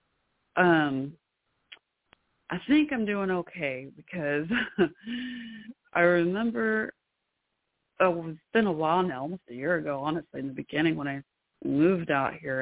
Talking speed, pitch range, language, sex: 135 wpm, 150-180 Hz, English, female